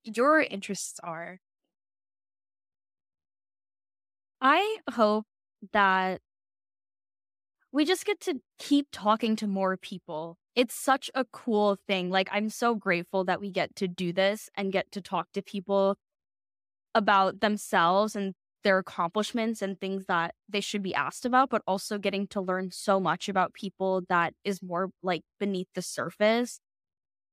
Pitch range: 180-220 Hz